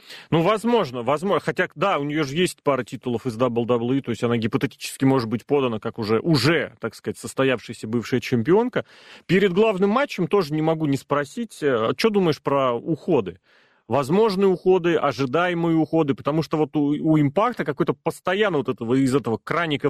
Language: Russian